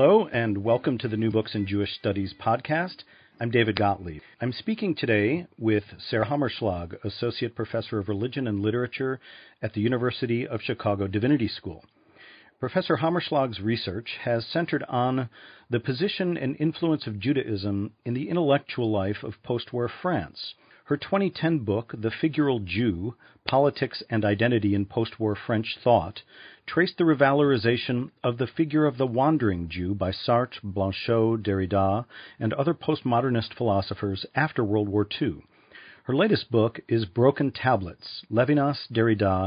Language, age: English, 40-59